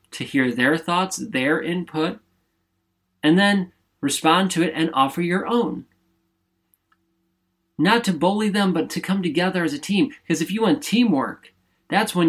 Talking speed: 160 wpm